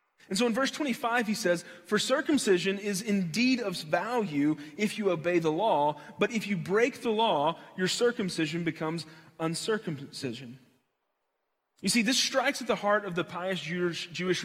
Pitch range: 175-245 Hz